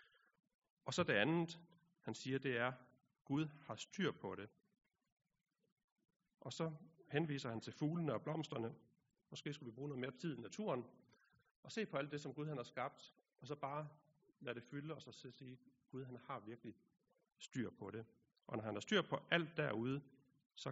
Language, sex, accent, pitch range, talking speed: Danish, male, native, 120-165 Hz, 195 wpm